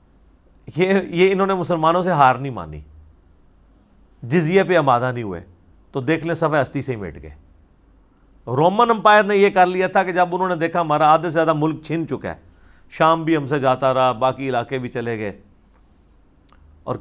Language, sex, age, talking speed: Urdu, male, 50-69, 190 wpm